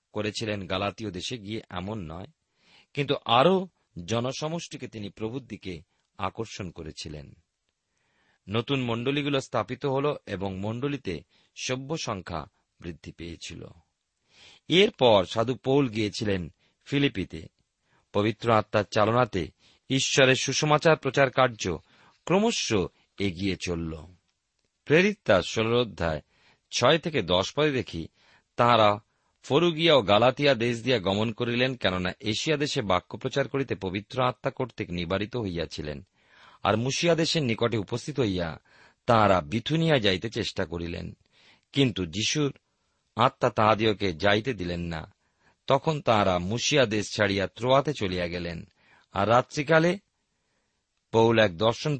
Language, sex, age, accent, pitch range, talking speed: Bengali, male, 40-59, native, 95-135 Hz, 95 wpm